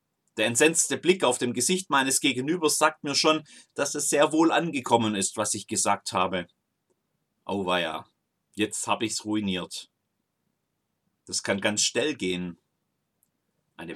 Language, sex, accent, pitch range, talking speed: German, male, German, 100-155 Hz, 140 wpm